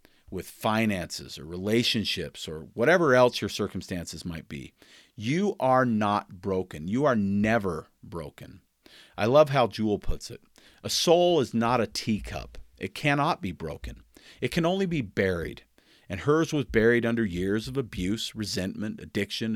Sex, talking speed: male, 155 wpm